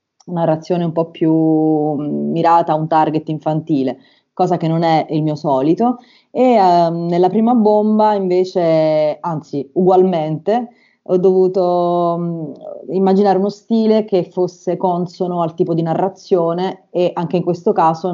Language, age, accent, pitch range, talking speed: Italian, 30-49, native, 160-190 Hz, 140 wpm